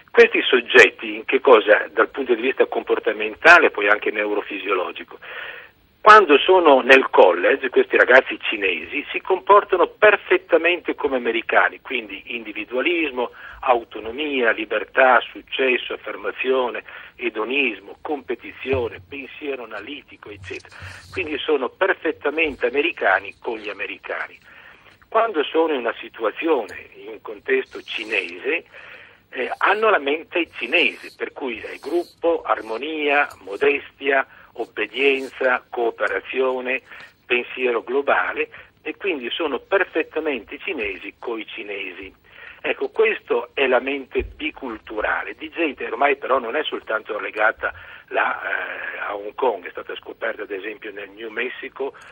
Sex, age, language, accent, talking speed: male, 50-69, Italian, native, 120 wpm